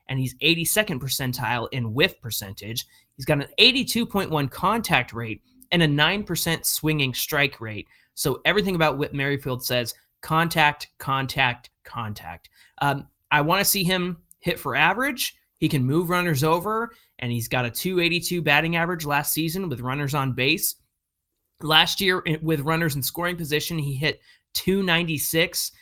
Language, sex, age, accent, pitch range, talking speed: English, male, 30-49, American, 130-170 Hz, 150 wpm